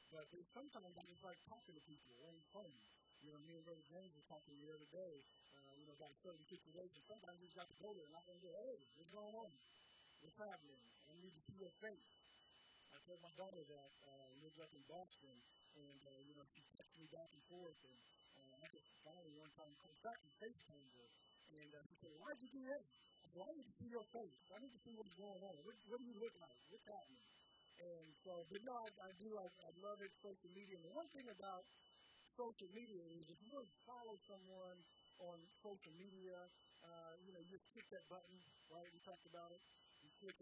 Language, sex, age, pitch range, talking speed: English, male, 50-69, 160-200 Hz, 235 wpm